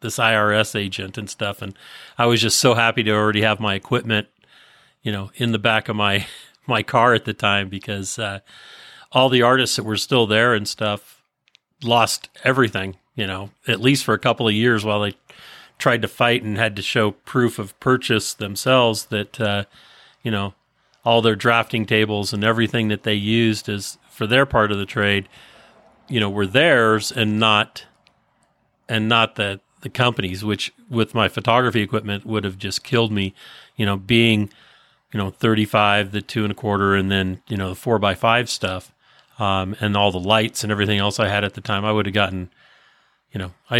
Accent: American